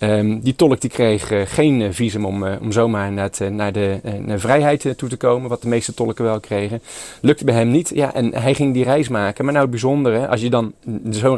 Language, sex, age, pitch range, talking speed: Dutch, male, 30-49, 105-130 Hz, 255 wpm